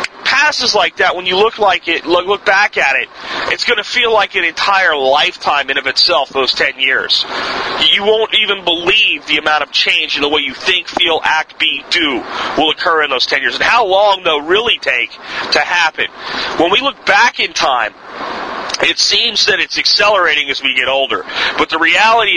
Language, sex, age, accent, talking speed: English, male, 40-59, American, 200 wpm